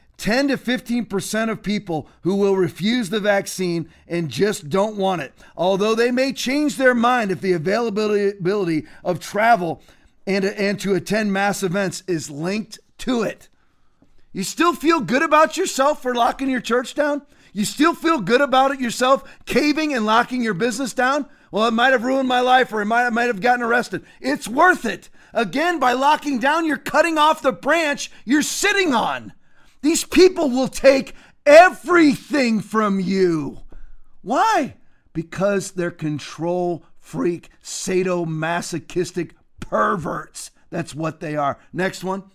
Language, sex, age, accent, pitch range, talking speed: English, male, 40-59, American, 175-250 Hz, 150 wpm